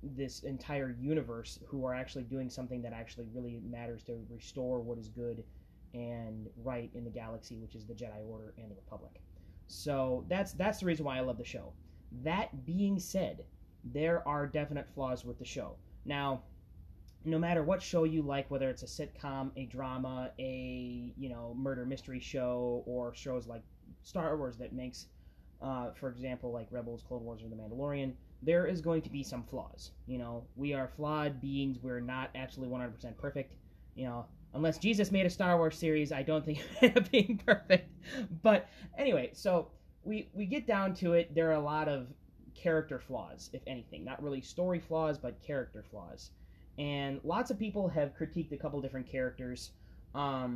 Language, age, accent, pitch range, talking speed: English, 20-39, American, 120-150 Hz, 185 wpm